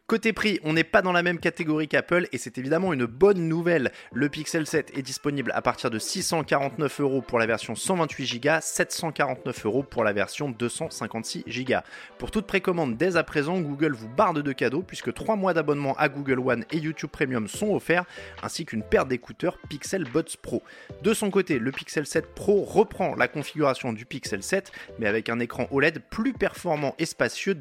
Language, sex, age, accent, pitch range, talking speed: French, male, 20-39, French, 125-175 Hz, 190 wpm